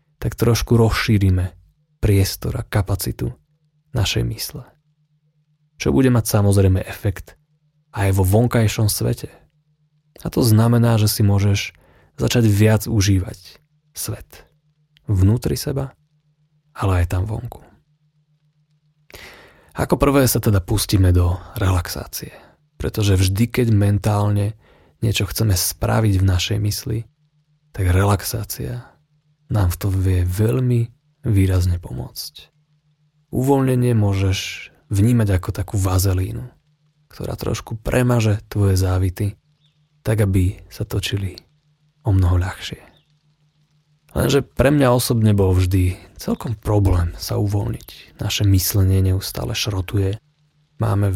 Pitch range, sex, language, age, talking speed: 95-135 Hz, male, Slovak, 30-49, 110 wpm